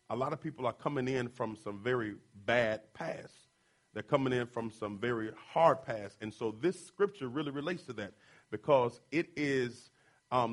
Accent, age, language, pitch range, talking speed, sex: American, 40-59, English, 125-175 Hz, 180 wpm, male